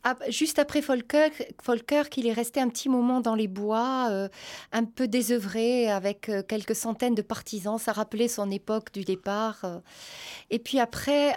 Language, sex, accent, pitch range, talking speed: French, female, Belgian, 210-260 Hz, 170 wpm